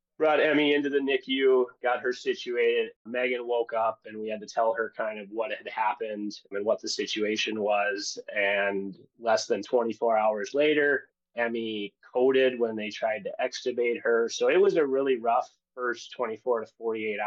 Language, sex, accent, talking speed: English, male, American, 175 wpm